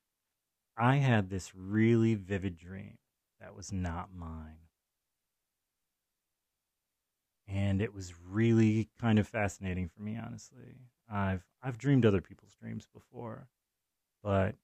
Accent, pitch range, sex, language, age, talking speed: American, 95-110 Hz, male, English, 30-49, 115 wpm